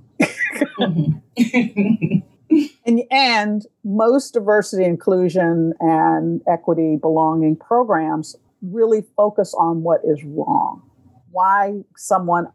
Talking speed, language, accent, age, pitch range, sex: 80 wpm, English, American, 50-69, 160-205 Hz, female